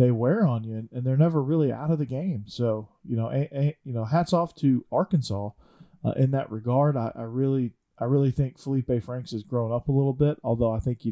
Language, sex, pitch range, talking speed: English, male, 110-130 Hz, 250 wpm